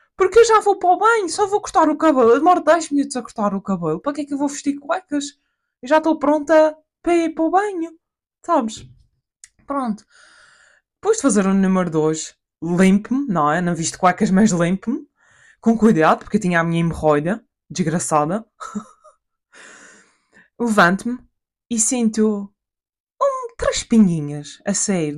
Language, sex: Portuguese, female